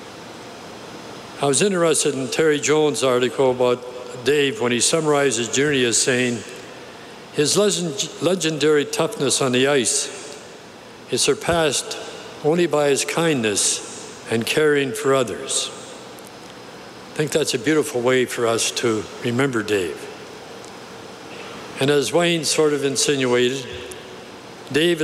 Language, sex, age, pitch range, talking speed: English, male, 60-79, 125-150 Hz, 120 wpm